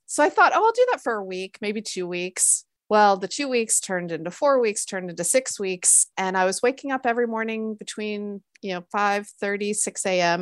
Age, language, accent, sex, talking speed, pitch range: 30-49, English, American, female, 225 wpm, 180-225 Hz